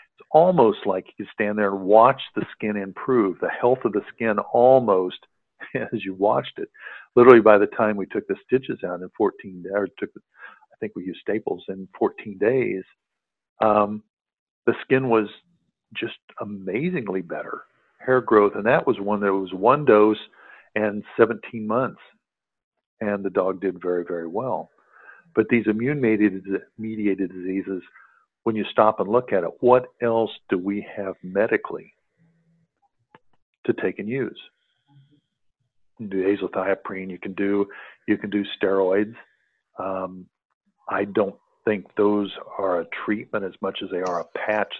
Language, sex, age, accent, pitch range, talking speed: English, male, 50-69, American, 95-115 Hz, 155 wpm